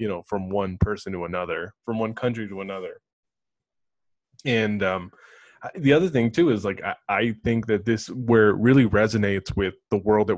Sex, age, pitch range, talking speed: male, 20-39, 100-120 Hz, 190 wpm